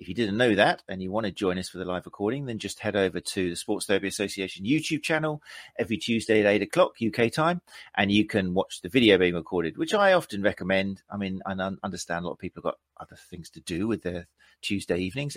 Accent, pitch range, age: British, 95-125 Hz, 40-59